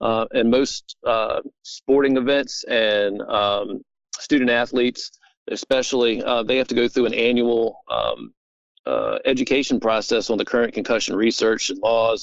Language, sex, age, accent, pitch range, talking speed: English, male, 50-69, American, 115-135 Hz, 145 wpm